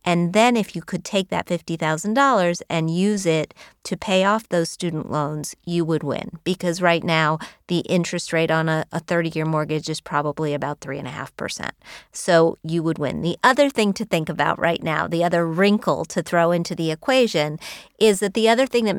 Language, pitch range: English, 160-190 Hz